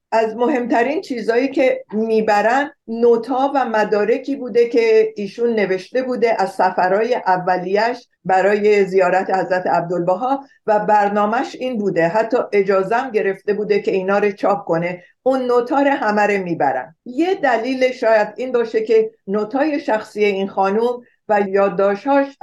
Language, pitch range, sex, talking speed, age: Persian, 195-260 Hz, female, 130 wpm, 50-69